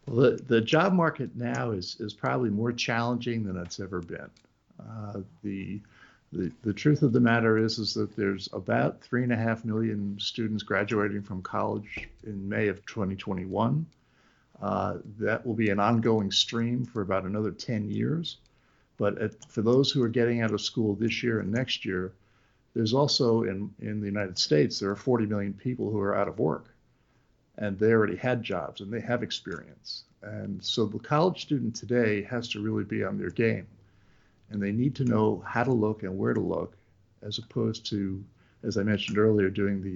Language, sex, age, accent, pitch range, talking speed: English, male, 50-69, American, 100-120 Hz, 190 wpm